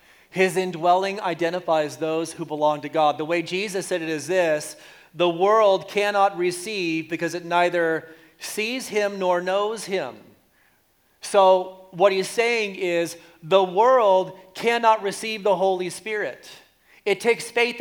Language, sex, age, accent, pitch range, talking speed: English, male, 40-59, American, 180-220 Hz, 140 wpm